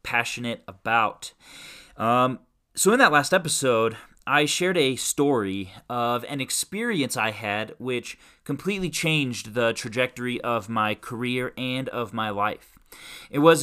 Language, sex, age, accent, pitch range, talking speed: English, male, 30-49, American, 115-145 Hz, 135 wpm